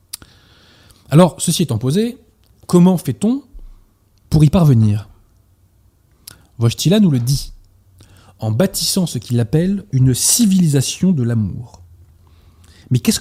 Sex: male